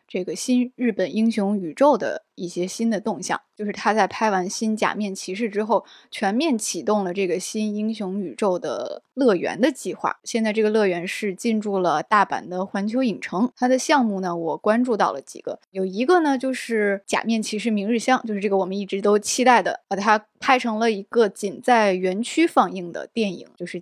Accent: native